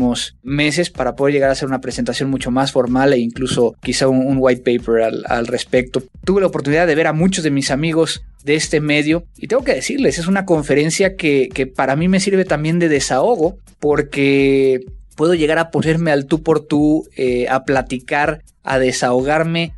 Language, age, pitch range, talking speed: Spanish, 30-49, 130-155 Hz, 195 wpm